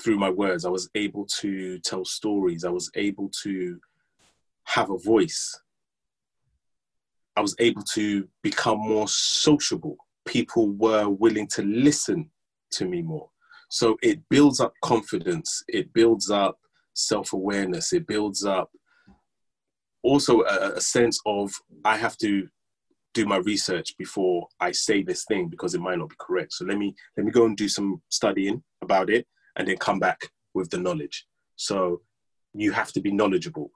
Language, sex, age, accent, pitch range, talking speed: English, male, 20-39, British, 95-115 Hz, 160 wpm